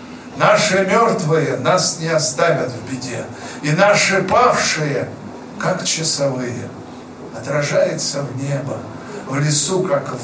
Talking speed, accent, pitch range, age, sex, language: 110 wpm, native, 135-195 Hz, 50-69, male, Russian